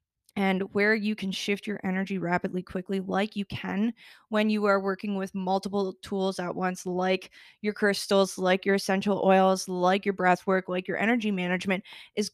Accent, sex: American, female